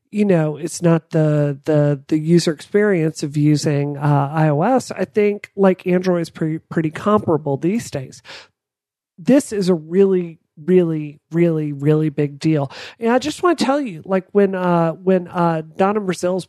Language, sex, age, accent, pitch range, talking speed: English, male, 40-59, American, 155-200 Hz, 165 wpm